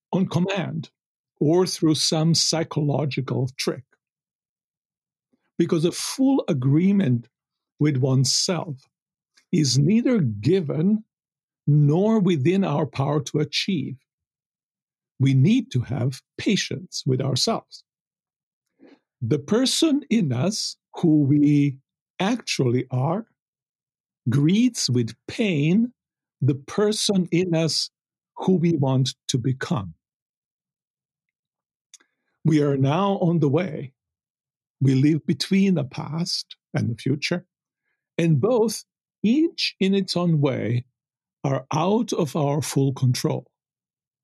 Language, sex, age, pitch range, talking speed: English, male, 50-69, 135-185 Hz, 105 wpm